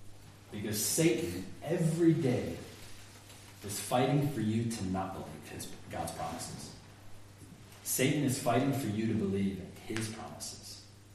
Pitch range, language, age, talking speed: 100-140 Hz, English, 30-49, 130 wpm